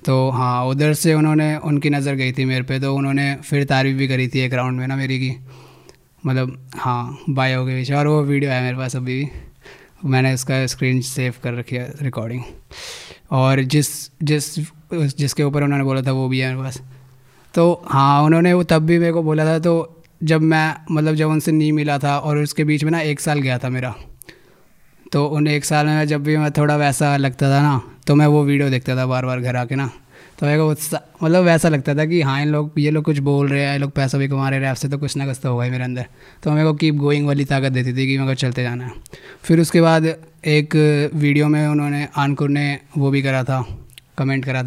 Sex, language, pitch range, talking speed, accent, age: male, Hindi, 130-155 Hz, 230 wpm, native, 20-39